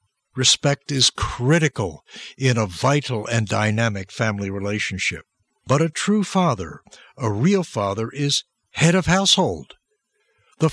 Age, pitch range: 60-79, 110-160 Hz